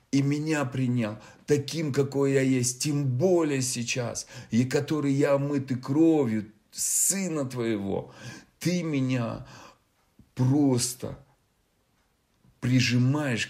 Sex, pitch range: male, 105-135 Hz